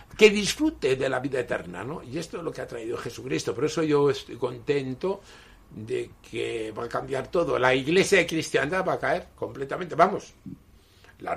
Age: 60-79